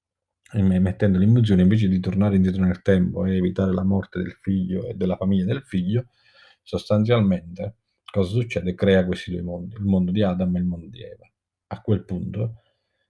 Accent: native